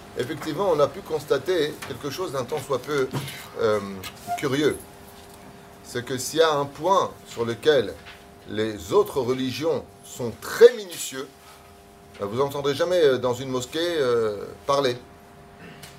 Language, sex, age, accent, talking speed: French, male, 30-49, French, 140 wpm